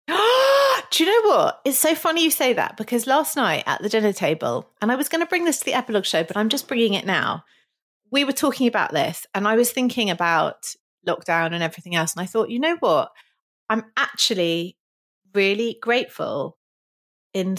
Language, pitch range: English, 175-250 Hz